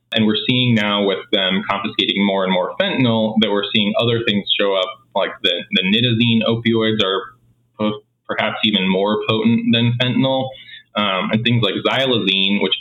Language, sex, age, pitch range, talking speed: English, male, 20-39, 100-115 Hz, 170 wpm